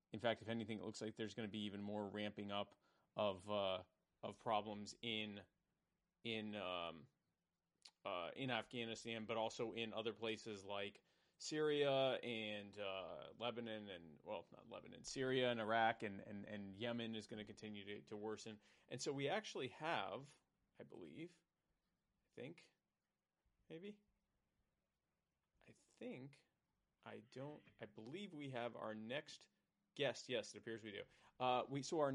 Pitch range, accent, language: 105-125 Hz, American, English